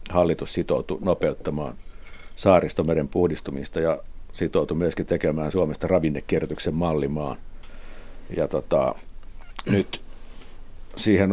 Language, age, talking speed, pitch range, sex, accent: Finnish, 60-79, 85 wpm, 80-100 Hz, male, native